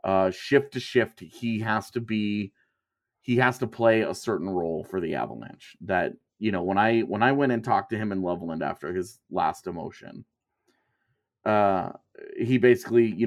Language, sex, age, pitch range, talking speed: English, male, 30-49, 100-125 Hz, 180 wpm